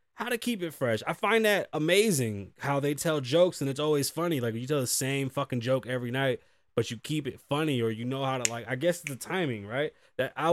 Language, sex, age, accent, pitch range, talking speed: English, male, 20-39, American, 120-170 Hz, 255 wpm